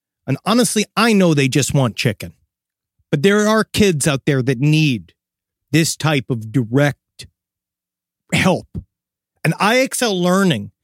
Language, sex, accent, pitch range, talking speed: English, male, American, 140-205 Hz, 135 wpm